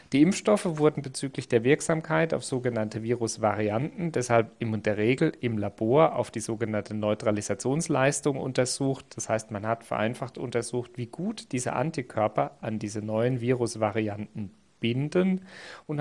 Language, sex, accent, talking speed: German, male, German, 135 wpm